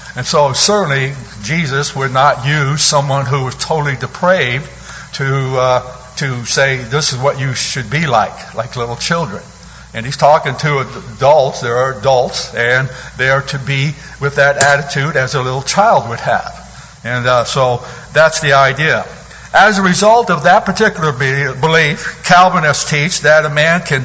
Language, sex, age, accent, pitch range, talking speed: English, male, 60-79, American, 135-160 Hz, 165 wpm